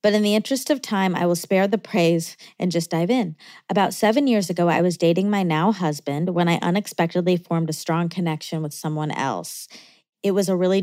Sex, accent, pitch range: female, American, 160-200 Hz